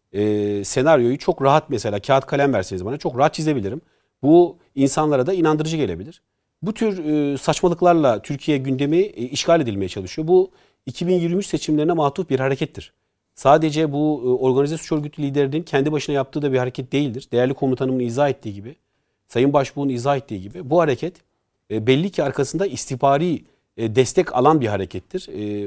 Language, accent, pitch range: Turkish, native, 120-155 Hz